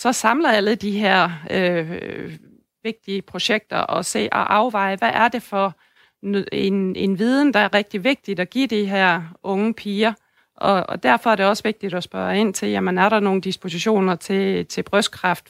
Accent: native